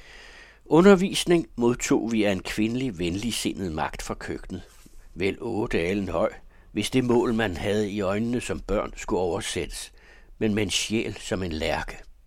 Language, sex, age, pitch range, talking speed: Danish, male, 60-79, 90-130 Hz, 150 wpm